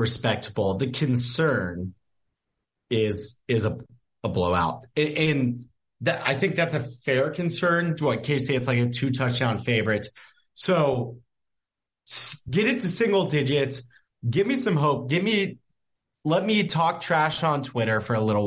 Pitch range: 115-155 Hz